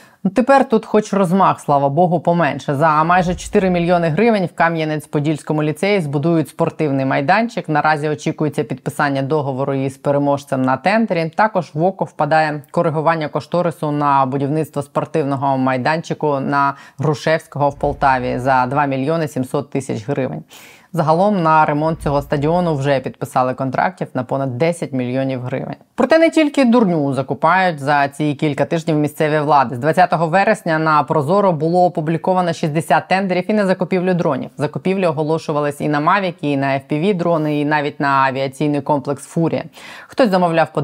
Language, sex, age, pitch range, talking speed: Ukrainian, female, 20-39, 145-170 Hz, 150 wpm